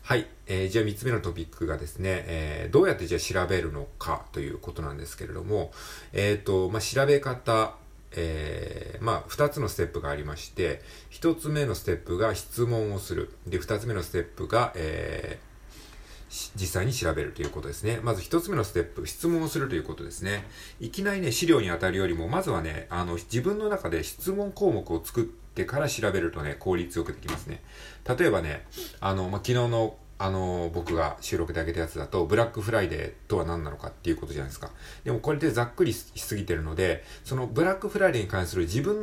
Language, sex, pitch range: Japanese, male, 85-120 Hz